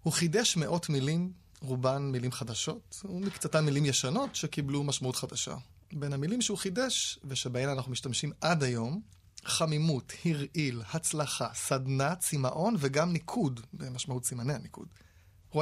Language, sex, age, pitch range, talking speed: Hebrew, male, 20-39, 125-175 Hz, 125 wpm